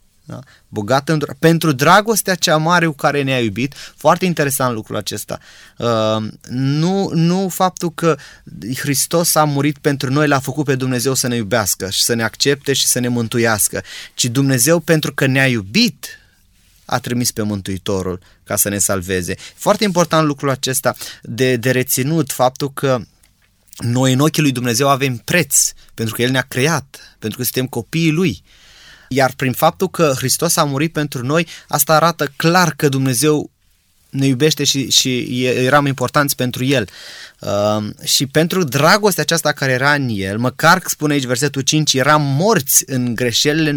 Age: 20-39